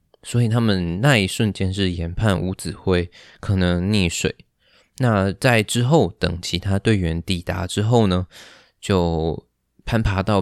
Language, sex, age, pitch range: Chinese, male, 20-39, 85-115 Hz